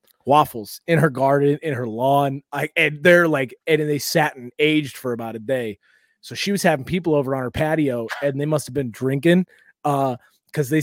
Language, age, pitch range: English, 20-39, 140-170 Hz